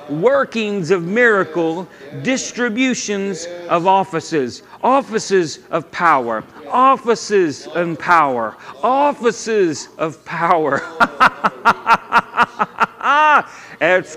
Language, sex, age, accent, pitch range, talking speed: English, male, 50-69, American, 190-245 Hz, 70 wpm